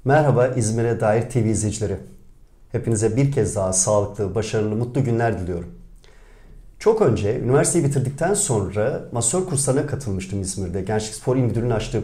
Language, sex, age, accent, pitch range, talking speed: Turkish, male, 50-69, native, 110-145 Hz, 140 wpm